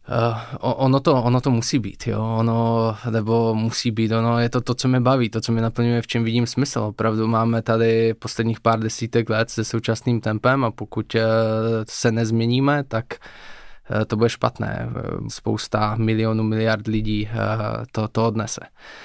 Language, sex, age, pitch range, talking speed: Czech, male, 20-39, 115-125 Hz, 160 wpm